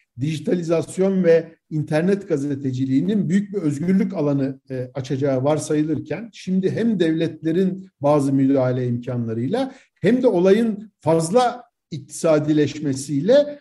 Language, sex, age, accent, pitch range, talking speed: Turkish, male, 50-69, native, 140-205 Hz, 95 wpm